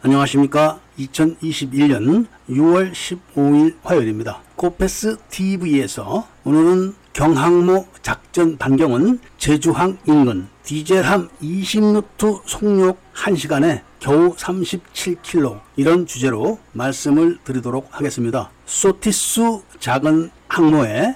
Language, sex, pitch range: Korean, male, 140-185 Hz